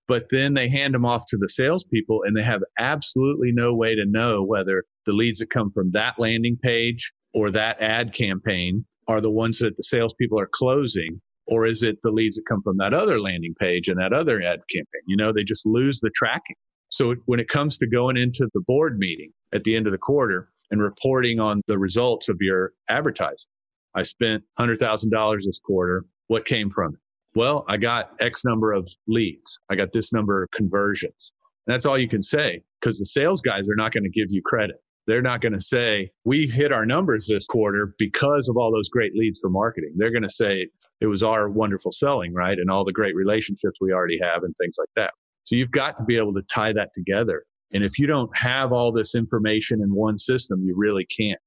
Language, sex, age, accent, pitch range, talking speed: English, male, 40-59, American, 105-120 Hz, 220 wpm